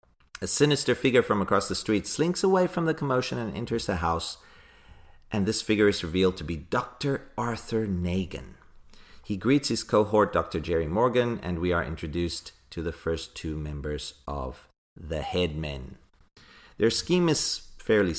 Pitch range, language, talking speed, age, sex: 85-115 Hz, English, 160 wpm, 40-59, male